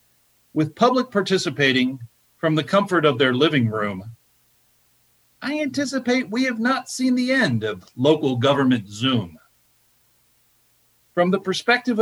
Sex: male